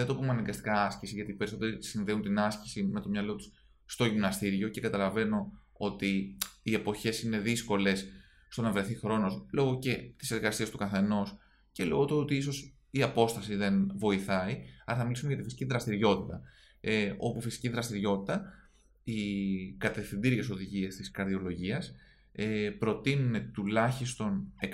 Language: Greek